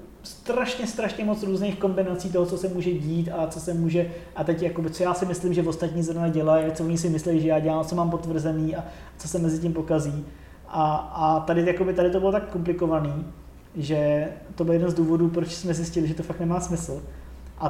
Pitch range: 160-180 Hz